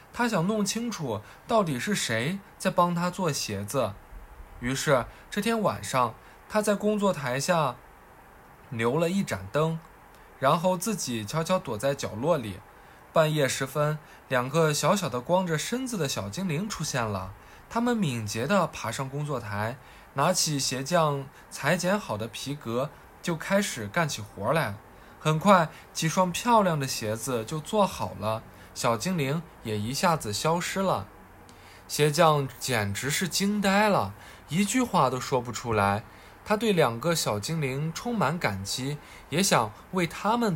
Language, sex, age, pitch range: Chinese, male, 20-39, 115-185 Hz